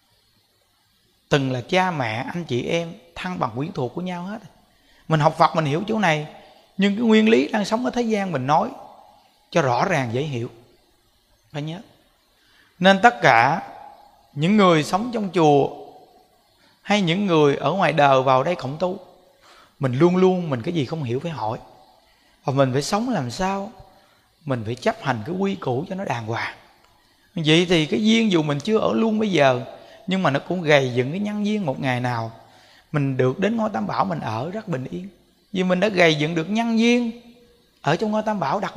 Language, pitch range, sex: Vietnamese, 140-200 Hz, male